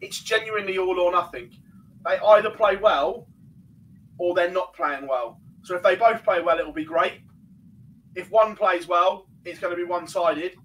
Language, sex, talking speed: English, male, 180 wpm